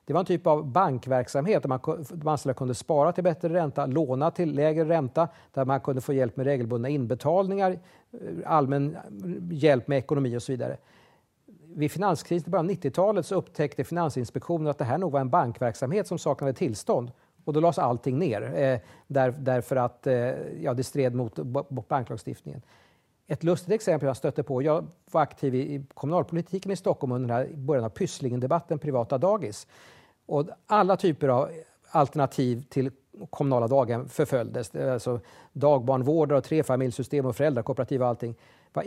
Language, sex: Swedish, male